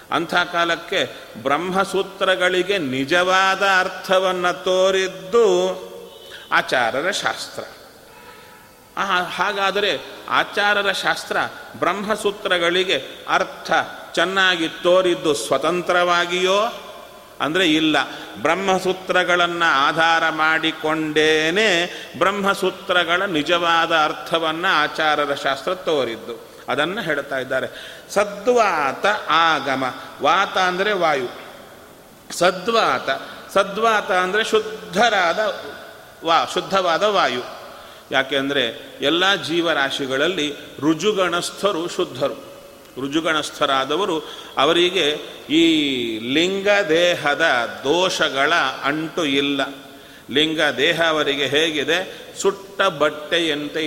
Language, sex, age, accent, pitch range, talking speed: Kannada, male, 40-59, native, 160-195 Hz, 70 wpm